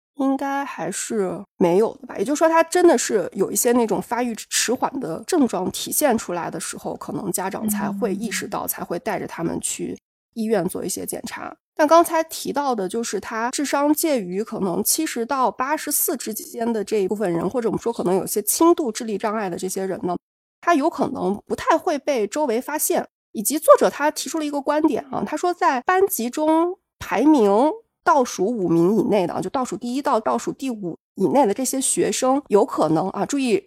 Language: Chinese